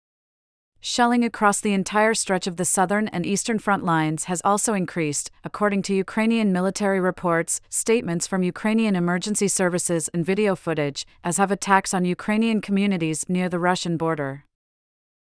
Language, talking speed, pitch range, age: English, 150 wpm, 170-200 Hz, 30-49